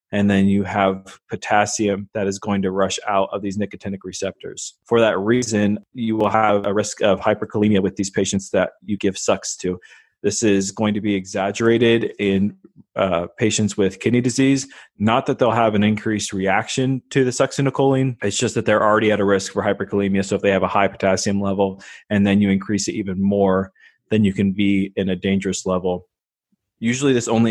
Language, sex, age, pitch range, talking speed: English, male, 20-39, 95-110 Hz, 200 wpm